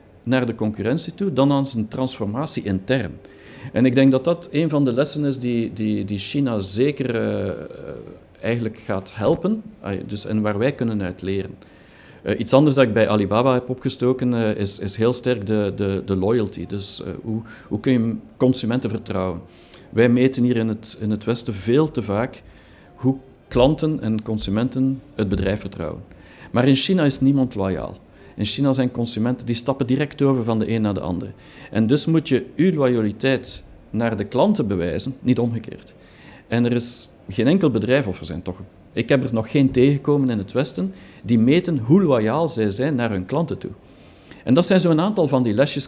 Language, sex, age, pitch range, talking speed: Dutch, male, 50-69, 105-135 Hz, 190 wpm